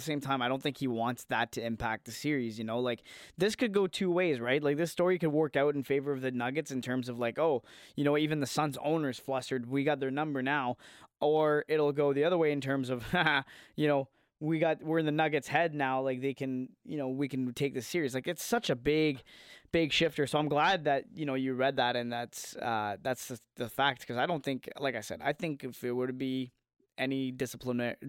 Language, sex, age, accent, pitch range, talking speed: English, male, 20-39, American, 120-155 Hz, 250 wpm